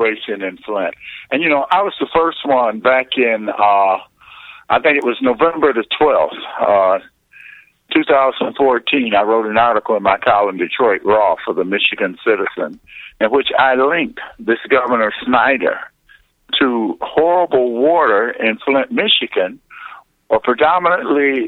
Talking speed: 140 wpm